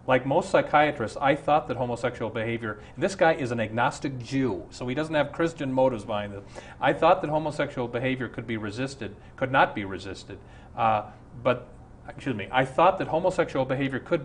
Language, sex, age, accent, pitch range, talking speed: English, male, 40-59, American, 120-150 Hz, 185 wpm